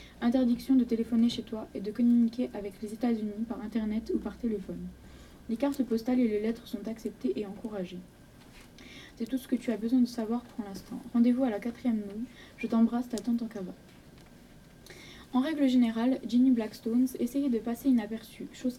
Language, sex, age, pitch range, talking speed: French, female, 20-39, 215-245 Hz, 190 wpm